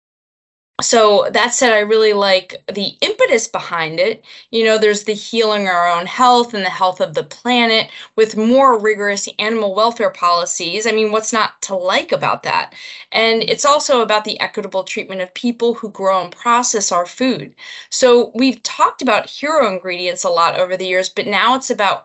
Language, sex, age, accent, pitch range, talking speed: English, female, 20-39, American, 185-240 Hz, 185 wpm